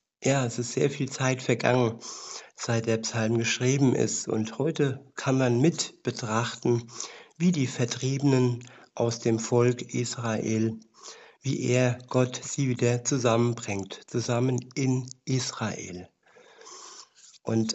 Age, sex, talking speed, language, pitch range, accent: 60-79, male, 120 wpm, German, 115-130 Hz, German